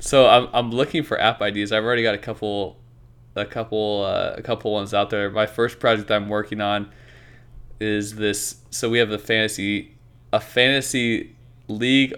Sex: male